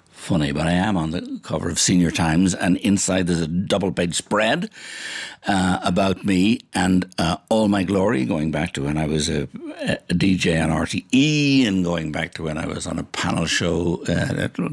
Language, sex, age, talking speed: English, male, 60-79, 205 wpm